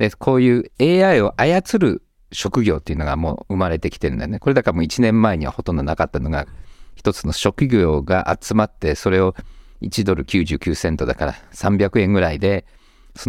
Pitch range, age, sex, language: 85-120 Hz, 50-69, male, Japanese